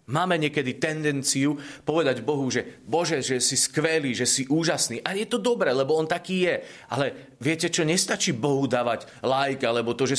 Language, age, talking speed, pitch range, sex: Slovak, 40-59, 185 wpm, 110-140 Hz, male